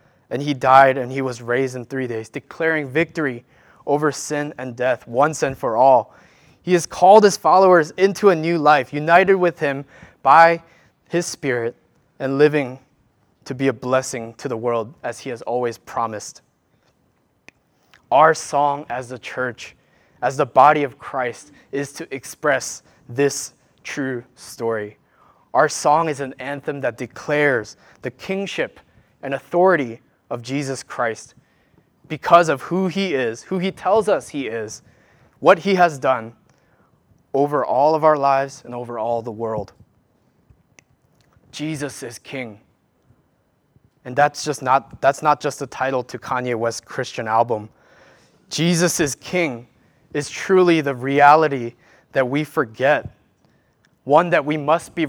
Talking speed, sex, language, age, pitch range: 150 wpm, male, English, 20-39, 125-155 Hz